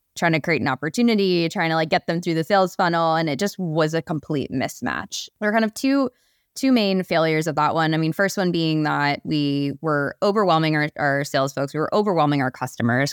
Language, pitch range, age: English, 145-185 Hz, 20-39